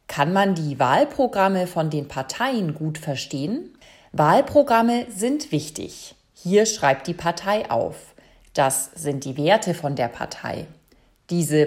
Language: German